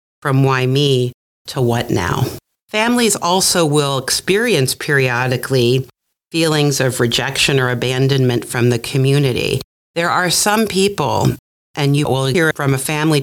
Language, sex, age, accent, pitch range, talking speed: English, female, 40-59, American, 130-160 Hz, 135 wpm